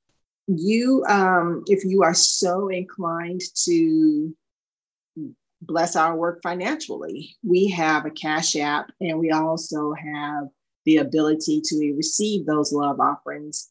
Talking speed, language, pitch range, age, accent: 125 wpm, English, 150-185 Hz, 40-59, American